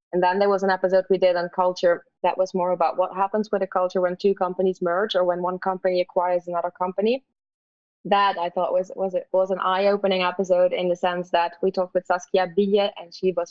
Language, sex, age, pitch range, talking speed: English, female, 20-39, 180-200 Hz, 235 wpm